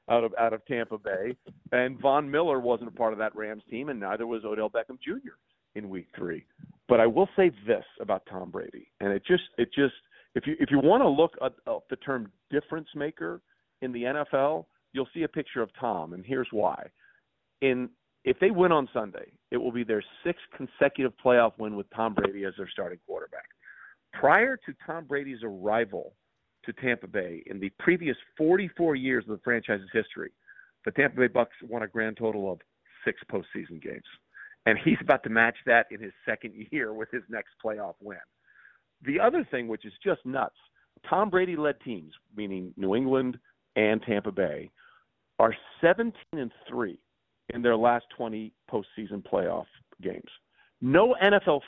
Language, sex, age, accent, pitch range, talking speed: English, male, 40-59, American, 110-160 Hz, 180 wpm